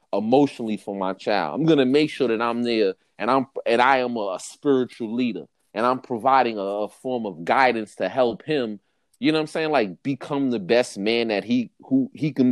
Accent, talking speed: American, 215 wpm